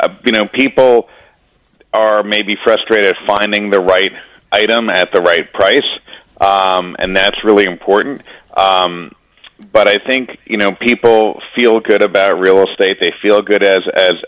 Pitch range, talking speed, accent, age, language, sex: 95-115 Hz, 155 wpm, American, 40-59, English, male